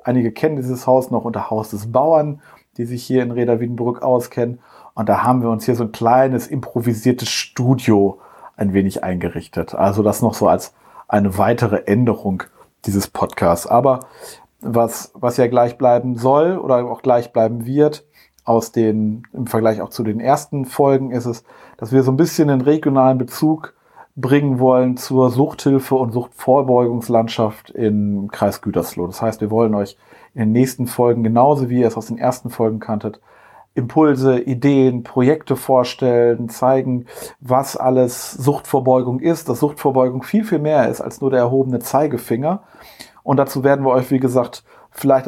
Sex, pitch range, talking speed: male, 115-135 Hz, 165 wpm